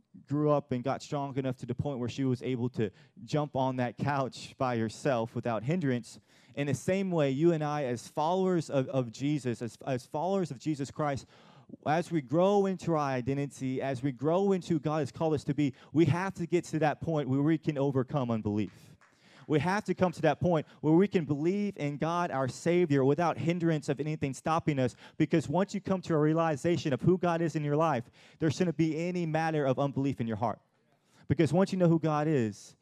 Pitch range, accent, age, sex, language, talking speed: 130-160 Hz, American, 30-49, male, English, 220 wpm